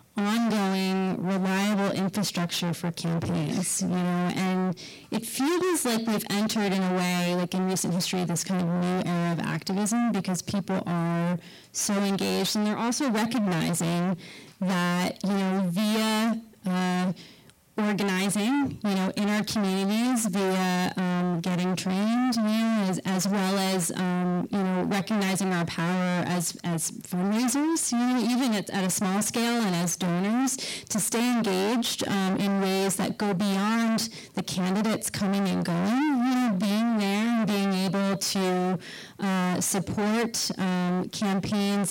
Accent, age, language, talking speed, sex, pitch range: American, 30-49, English, 145 wpm, female, 180-210 Hz